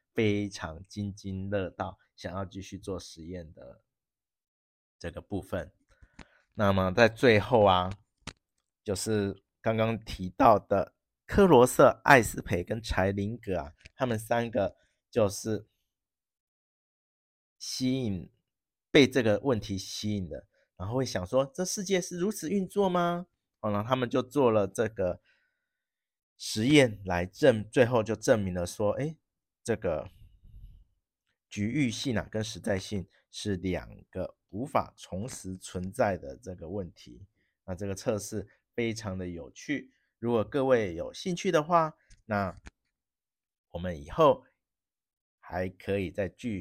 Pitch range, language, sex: 95-125 Hz, Chinese, male